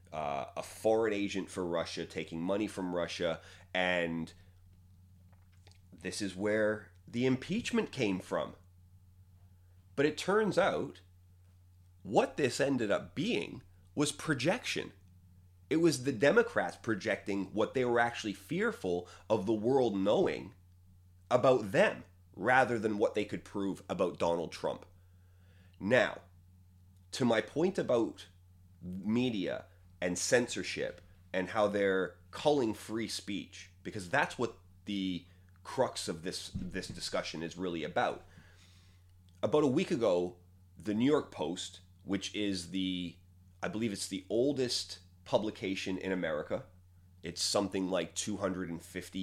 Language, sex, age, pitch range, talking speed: English, male, 30-49, 90-100 Hz, 125 wpm